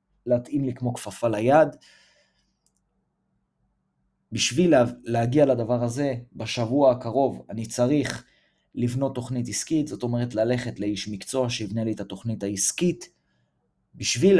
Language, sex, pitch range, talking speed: Hebrew, male, 115-135 Hz, 115 wpm